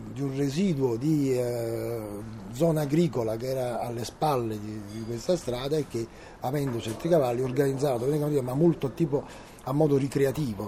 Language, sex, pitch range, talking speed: Italian, male, 115-140 Hz, 155 wpm